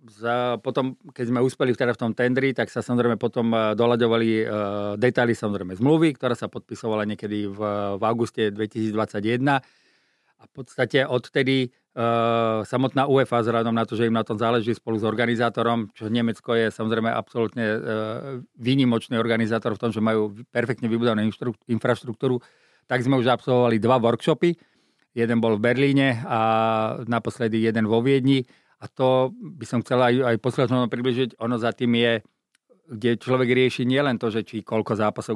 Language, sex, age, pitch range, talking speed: Slovak, male, 40-59, 110-125 Hz, 165 wpm